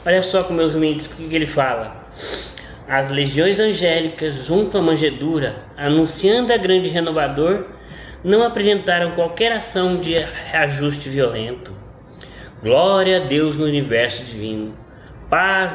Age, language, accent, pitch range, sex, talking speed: 20-39, Portuguese, Brazilian, 125-170 Hz, male, 130 wpm